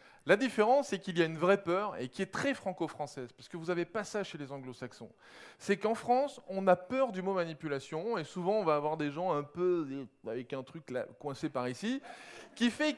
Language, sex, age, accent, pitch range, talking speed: French, male, 20-39, French, 165-230 Hz, 240 wpm